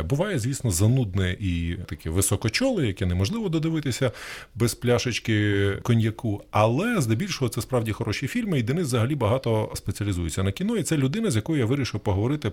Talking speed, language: 160 wpm, Ukrainian